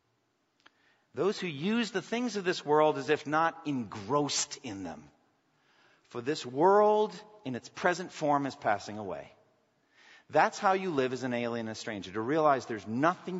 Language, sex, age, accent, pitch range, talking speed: English, male, 50-69, American, 105-150 Hz, 170 wpm